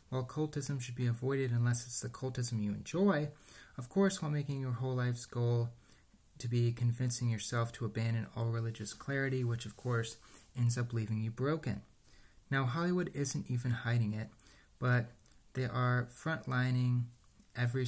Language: English